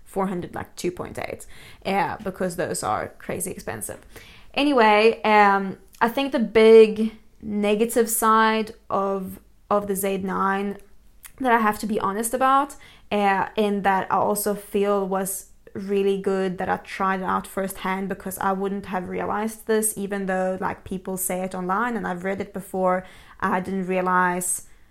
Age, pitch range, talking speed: 20-39, 185-215 Hz, 150 wpm